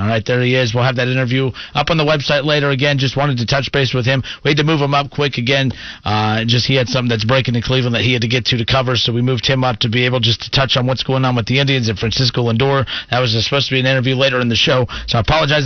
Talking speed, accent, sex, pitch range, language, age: 315 wpm, American, male, 120-140 Hz, English, 40-59